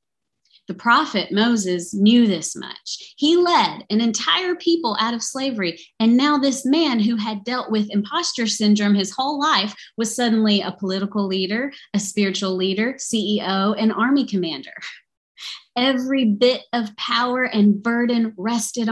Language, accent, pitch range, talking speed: English, American, 195-255 Hz, 145 wpm